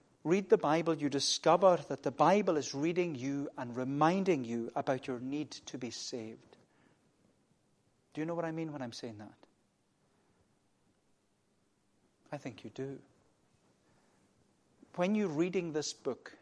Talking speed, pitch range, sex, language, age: 145 wpm, 140-195 Hz, male, English, 40-59